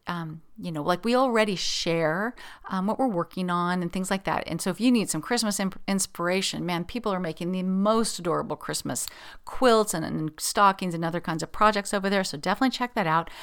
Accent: American